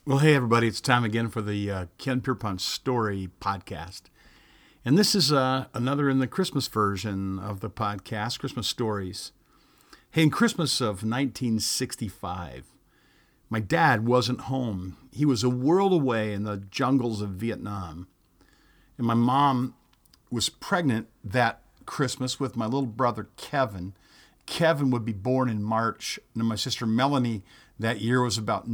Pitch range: 110-135 Hz